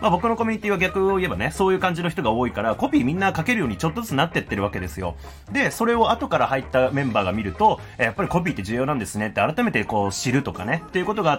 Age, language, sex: 30-49, Japanese, male